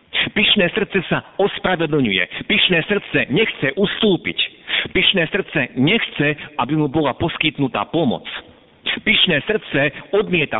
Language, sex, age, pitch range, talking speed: Slovak, male, 50-69, 110-155 Hz, 110 wpm